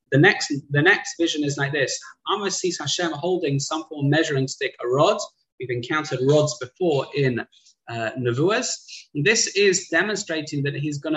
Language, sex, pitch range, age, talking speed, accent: English, male, 135-175 Hz, 20-39, 165 wpm, British